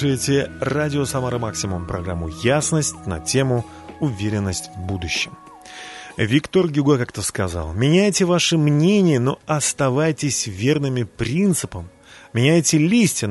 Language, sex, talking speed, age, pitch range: Russian, male, 110 wpm, 30-49, 100-140 Hz